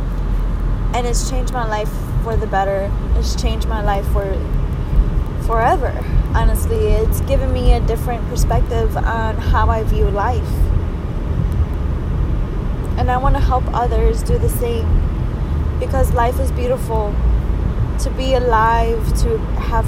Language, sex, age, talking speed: English, female, 10-29, 135 wpm